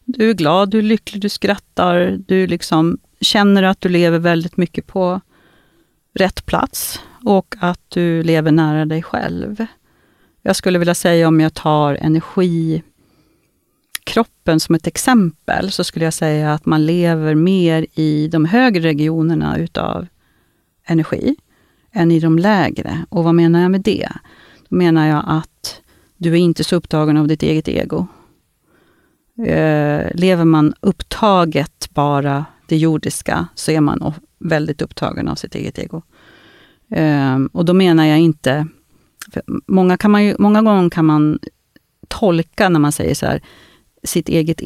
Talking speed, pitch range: 150 wpm, 155-185 Hz